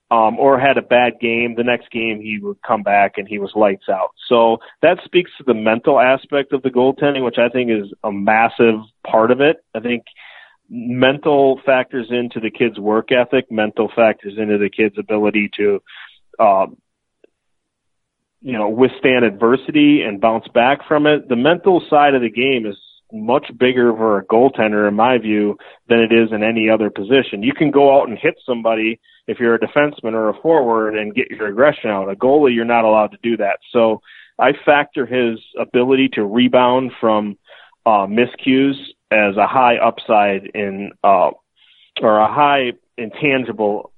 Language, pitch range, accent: English, 110-130 Hz, American